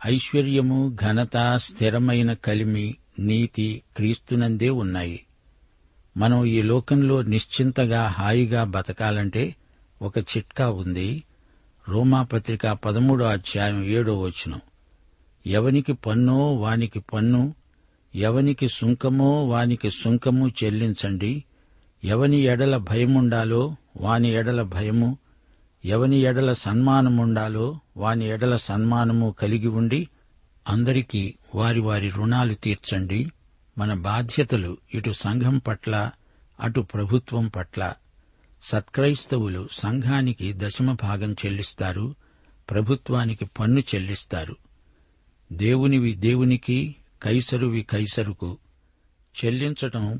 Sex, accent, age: male, native, 60-79